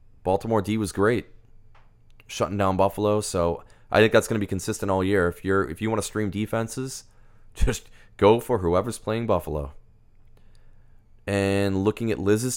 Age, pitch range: 30-49, 90-110 Hz